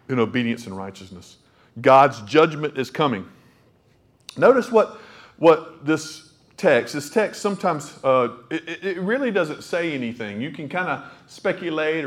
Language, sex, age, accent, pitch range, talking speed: English, male, 50-69, American, 120-165 Hz, 140 wpm